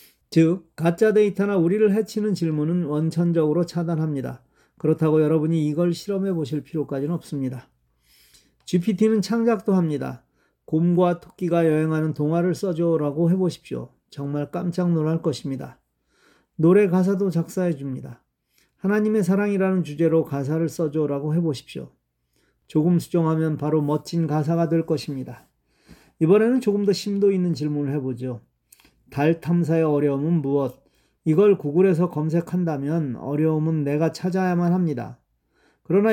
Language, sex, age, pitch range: Korean, male, 40-59, 150-180 Hz